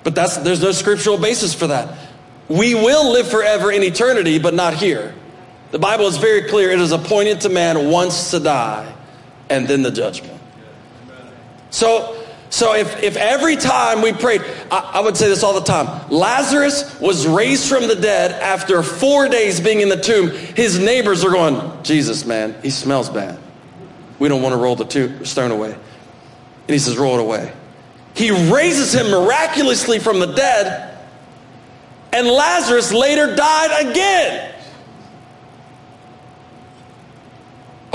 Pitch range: 145-220 Hz